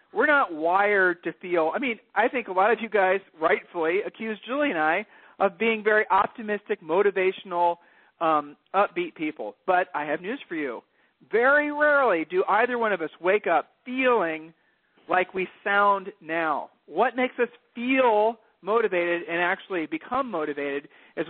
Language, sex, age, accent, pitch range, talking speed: English, male, 40-59, American, 170-225 Hz, 160 wpm